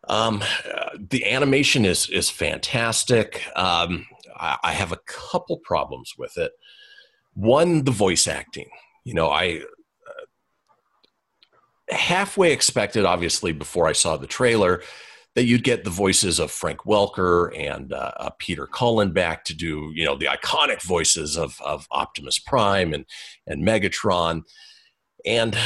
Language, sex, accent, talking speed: English, male, American, 145 wpm